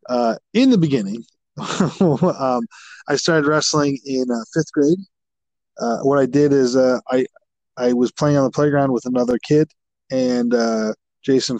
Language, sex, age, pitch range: English, male, 20-39, 120-150 Hz